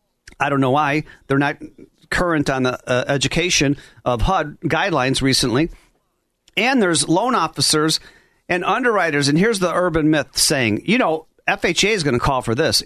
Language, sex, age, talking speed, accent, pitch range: English, male, 40-59, 170 wpm, American, 145-185 Hz